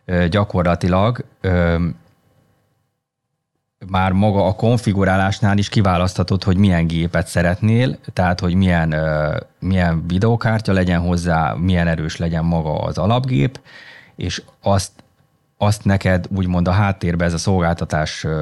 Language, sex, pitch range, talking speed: Hungarian, male, 85-105 Hz, 115 wpm